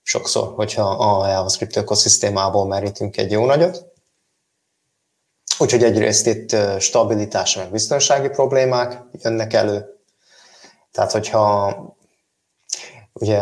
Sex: male